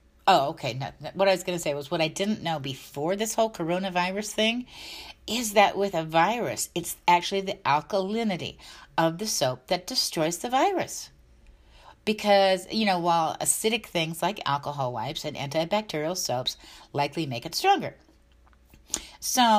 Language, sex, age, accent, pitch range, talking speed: English, female, 50-69, American, 145-190 Hz, 155 wpm